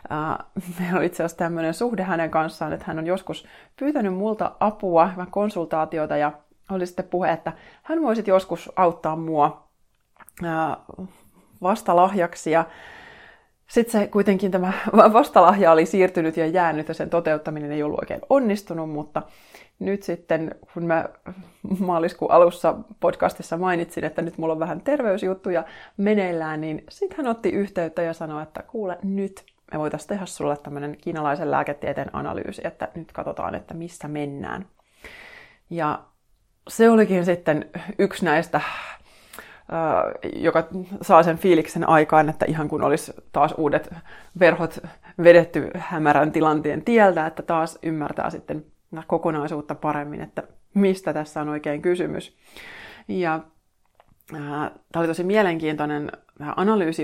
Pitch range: 155-190 Hz